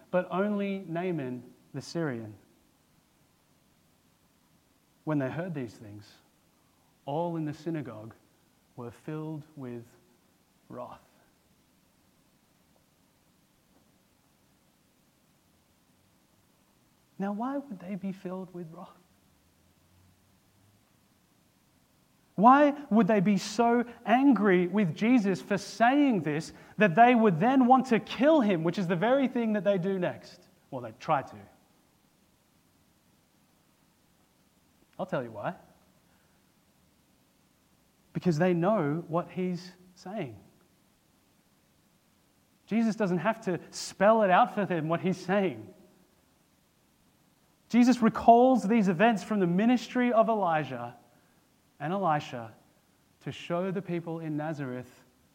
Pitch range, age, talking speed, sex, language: 145-215 Hz, 30-49, 105 wpm, male, English